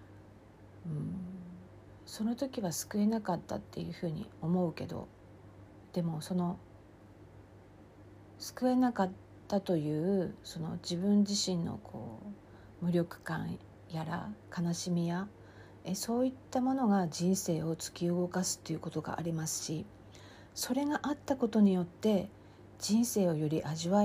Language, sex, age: Japanese, female, 50-69